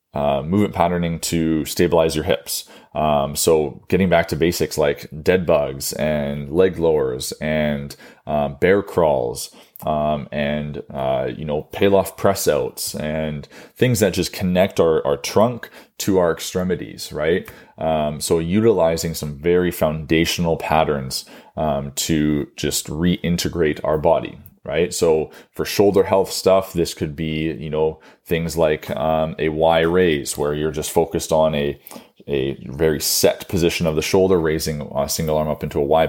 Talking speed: 155 wpm